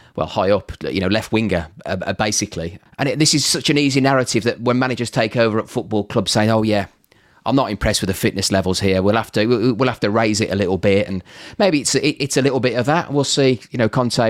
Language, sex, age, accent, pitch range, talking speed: English, male, 30-49, British, 105-140 Hz, 265 wpm